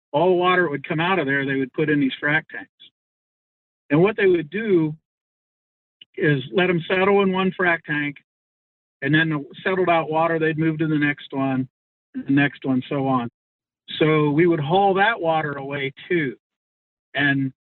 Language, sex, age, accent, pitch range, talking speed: English, male, 50-69, American, 145-180 Hz, 180 wpm